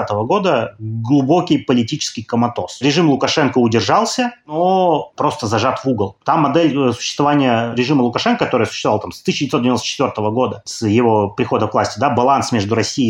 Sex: male